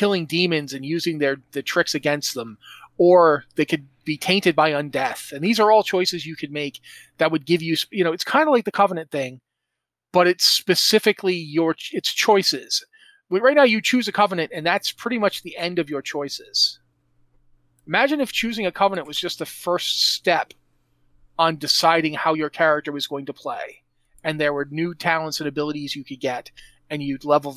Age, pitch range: 30-49, 145-195 Hz